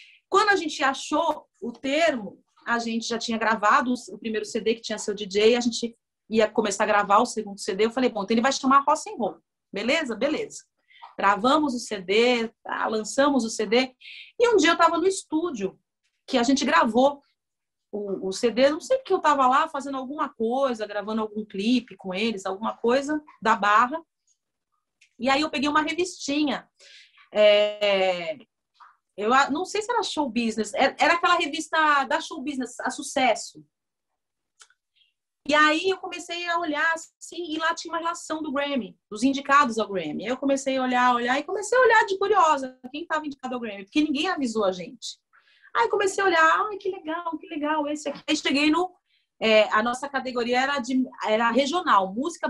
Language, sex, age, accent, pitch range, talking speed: Portuguese, female, 40-59, Brazilian, 225-320 Hz, 185 wpm